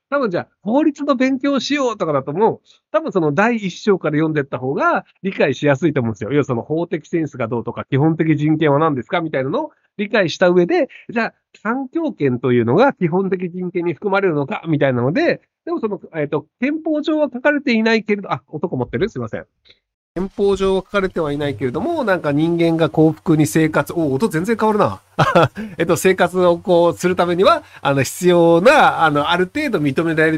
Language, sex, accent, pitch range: Japanese, male, native, 145-215 Hz